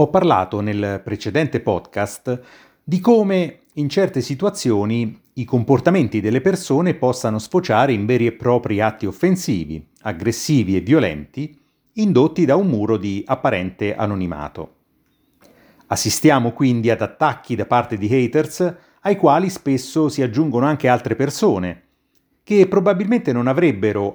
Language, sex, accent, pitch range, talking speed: Italian, male, native, 105-145 Hz, 130 wpm